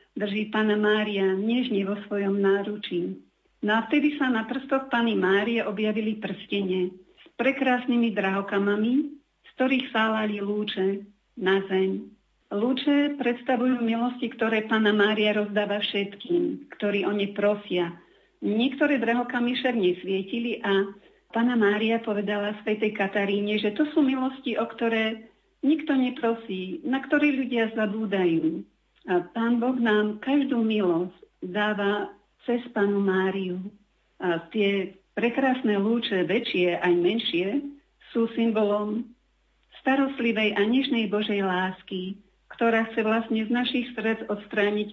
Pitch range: 200-245 Hz